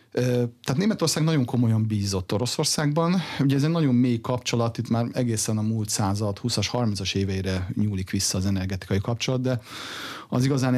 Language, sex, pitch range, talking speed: Hungarian, male, 95-125 Hz, 160 wpm